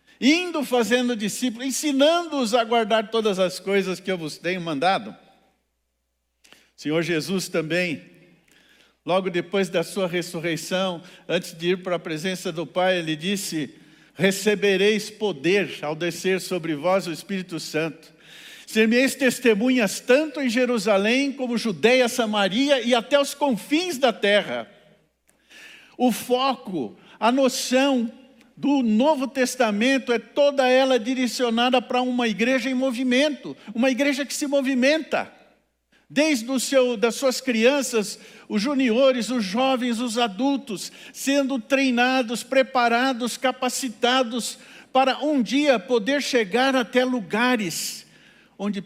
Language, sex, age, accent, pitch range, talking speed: Portuguese, male, 60-79, Brazilian, 185-255 Hz, 120 wpm